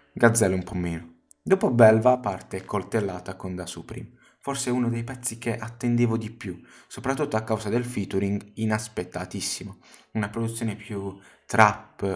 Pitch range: 95-120 Hz